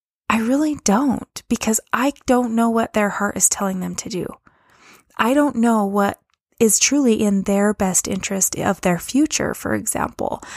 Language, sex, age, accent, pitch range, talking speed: English, female, 20-39, American, 190-225 Hz, 170 wpm